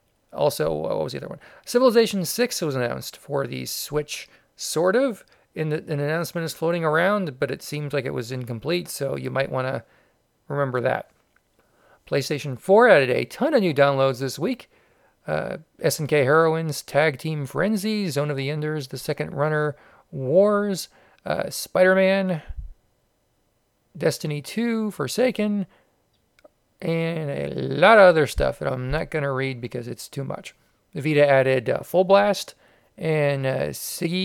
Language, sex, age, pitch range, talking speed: English, male, 40-59, 140-190 Hz, 155 wpm